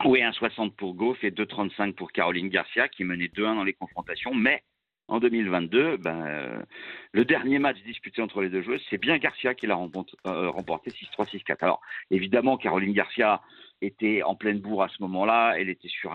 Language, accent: French, French